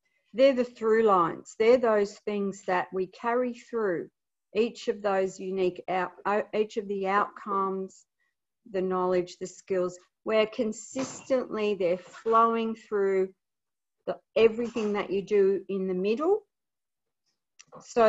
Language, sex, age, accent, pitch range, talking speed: English, female, 50-69, Australian, 185-225 Hz, 125 wpm